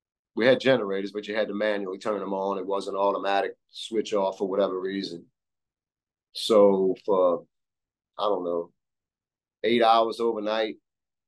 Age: 40-59